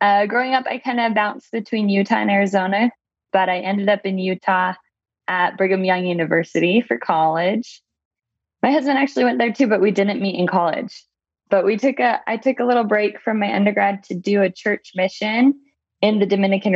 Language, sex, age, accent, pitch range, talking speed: English, female, 20-39, American, 180-215 Hz, 195 wpm